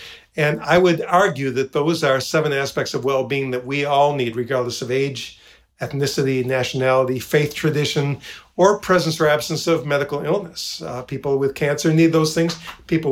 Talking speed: 170 wpm